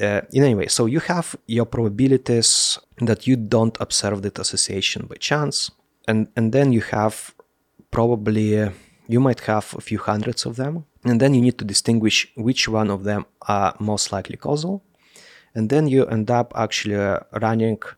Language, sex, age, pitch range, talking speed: English, male, 20-39, 100-120 Hz, 180 wpm